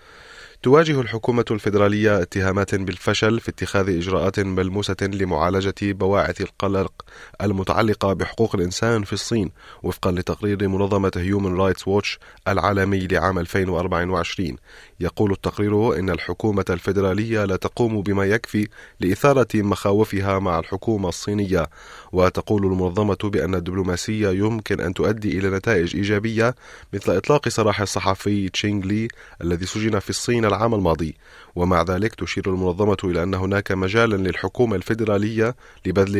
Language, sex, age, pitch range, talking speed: Arabic, male, 30-49, 95-145 Hz, 120 wpm